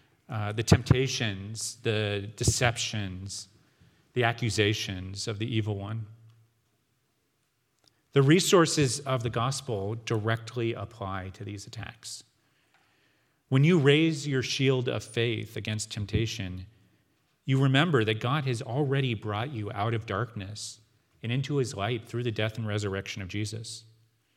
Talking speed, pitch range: 130 wpm, 110-135 Hz